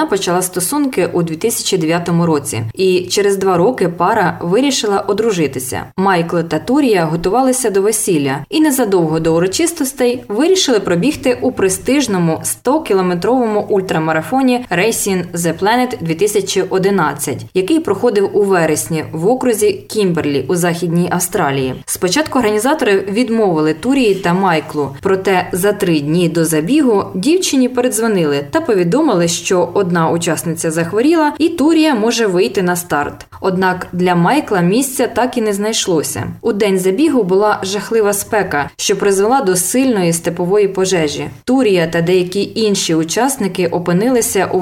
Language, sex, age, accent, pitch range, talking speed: Ukrainian, female, 20-39, native, 170-225 Hz, 130 wpm